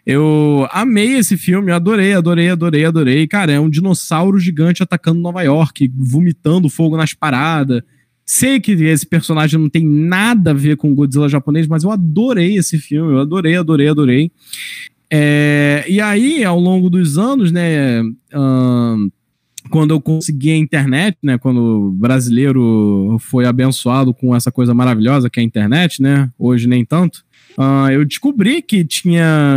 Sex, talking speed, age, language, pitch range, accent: male, 160 wpm, 20-39, Portuguese, 135-175 Hz, Brazilian